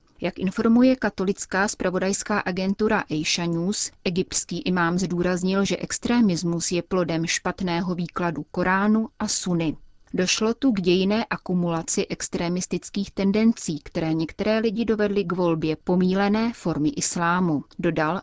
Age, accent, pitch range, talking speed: 30-49, native, 170-205 Hz, 120 wpm